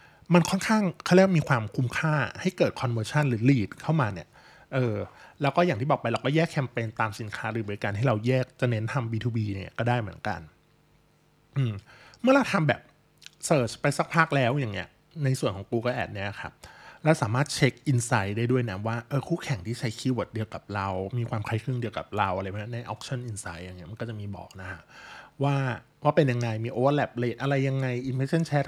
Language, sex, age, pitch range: Thai, male, 20-39, 110-145 Hz